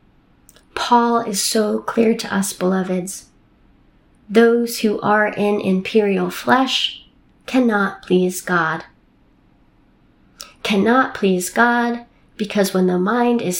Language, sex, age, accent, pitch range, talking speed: English, female, 30-49, American, 190-235 Hz, 105 wpm